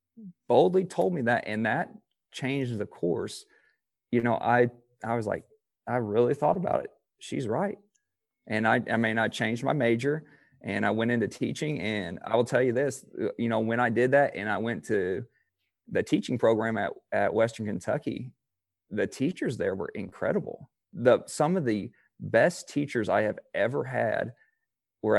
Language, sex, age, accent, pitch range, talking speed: English, male, 40-59, American, 110-130 Hz, 175 wpm